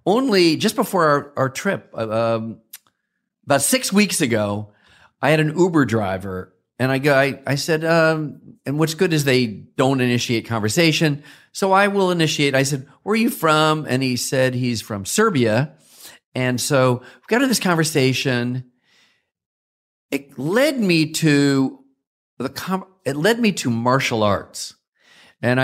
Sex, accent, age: male, American, 40-59